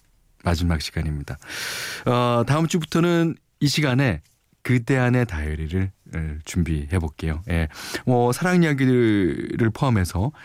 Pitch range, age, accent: 90-145 Hz, 40-59, native